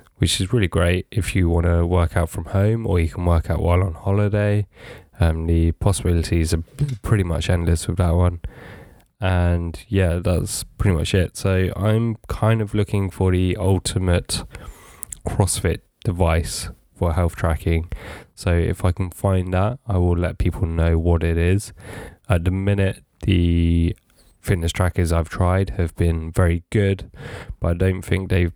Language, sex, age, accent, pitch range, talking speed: English, male, 10-29, British, 85-100 Hz, 170 wpm